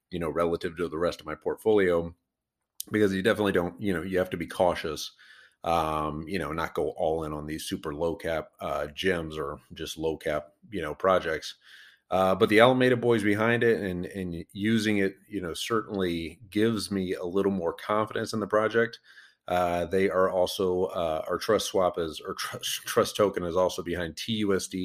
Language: English